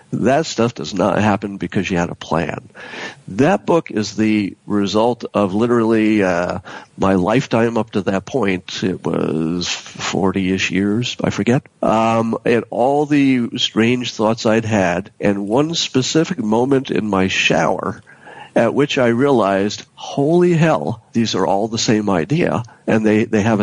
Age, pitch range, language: 50-69, 100-120 Hz, English